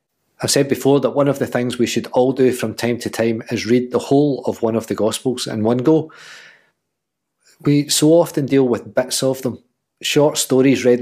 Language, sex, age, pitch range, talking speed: English, male, 40-59, 125-155 Hz, 210 wpm